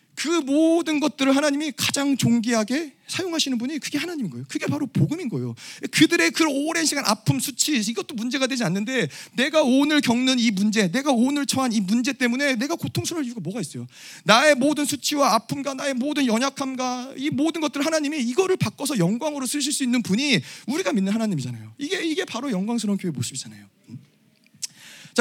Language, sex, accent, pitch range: Korean, male, native, 175-275 Hz